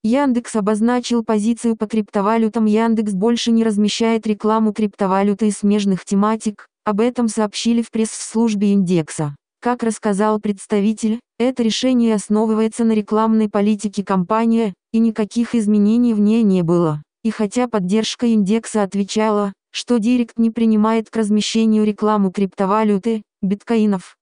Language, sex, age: Russian, female, 20-39